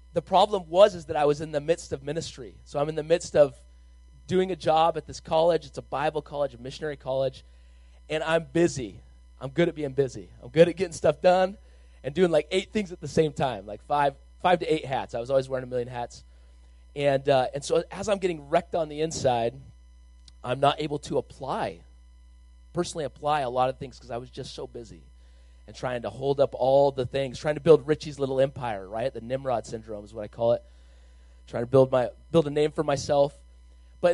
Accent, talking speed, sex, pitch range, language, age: American, 225 wpm, male, 105-155 Hz, English, 30-49